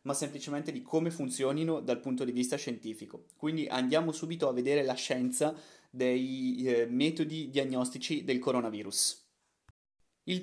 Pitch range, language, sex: 115-155 Hz, Italian, male